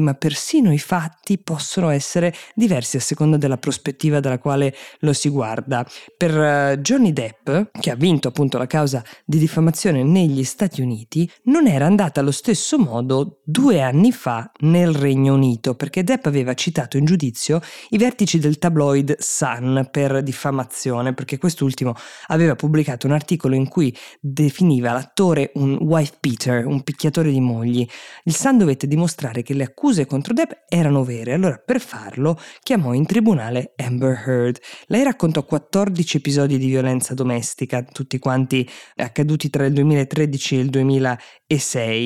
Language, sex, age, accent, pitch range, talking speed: Italian, female, 20-39, native, 135-180 Hz, 155 wpm